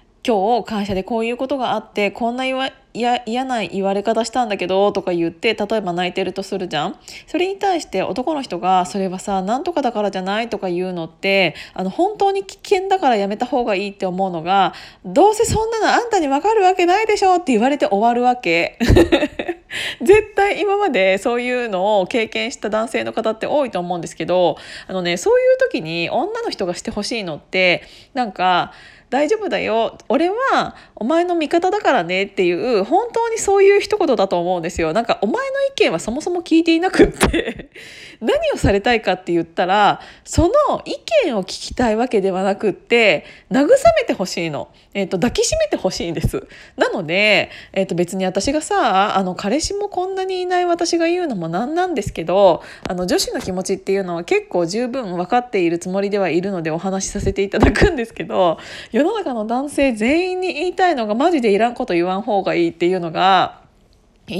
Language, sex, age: Japanese, female, 20-39